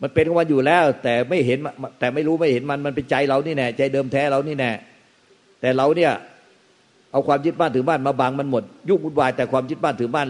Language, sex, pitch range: Thai, male, 110-135 Hz